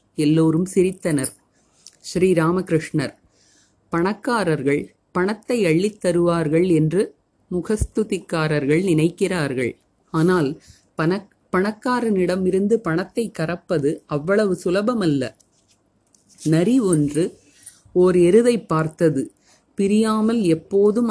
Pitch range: 160-205 Hz